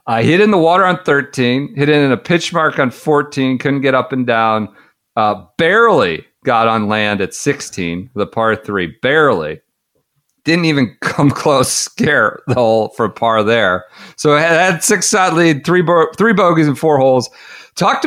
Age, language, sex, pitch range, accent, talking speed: 40-59, English, male, 110-165 Hz, American, 190 wpm